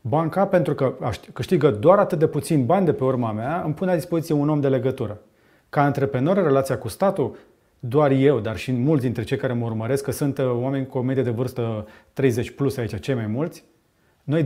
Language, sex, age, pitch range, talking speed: Romanian, male, 30-49, 135-165 Hz, 215 wpm